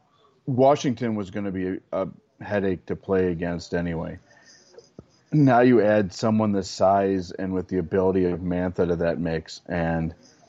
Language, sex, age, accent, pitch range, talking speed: English, male, 30-49, American, 90-110 Hz, 155 wpm